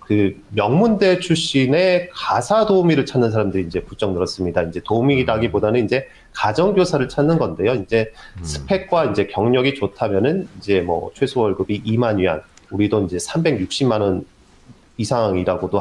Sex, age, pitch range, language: male, 30-49, 105-160 Hz, Korean